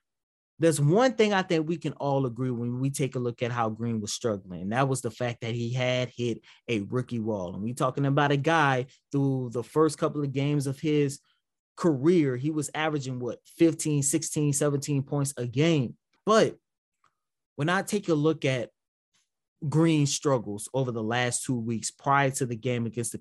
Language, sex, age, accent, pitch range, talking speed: English, male, 20-39, American, 120-155 Hz, 195 wpm